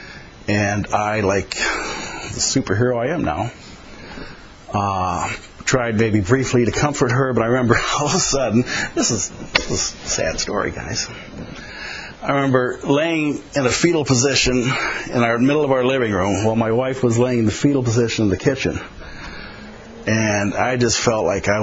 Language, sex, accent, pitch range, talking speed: English, male, American, 105-130 Hz, 170 wpm